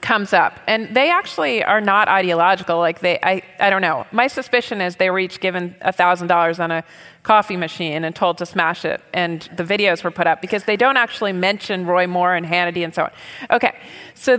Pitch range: 180-250 Hz